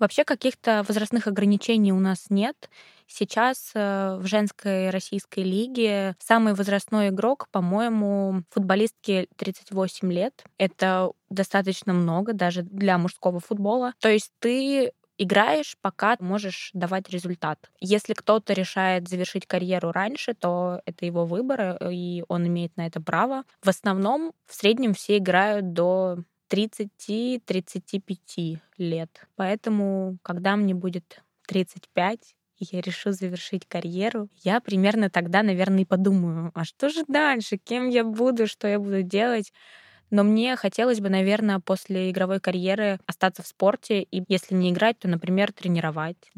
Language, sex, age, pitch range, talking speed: Russian, female, 20-39, 180-210 Hz, 135 wpm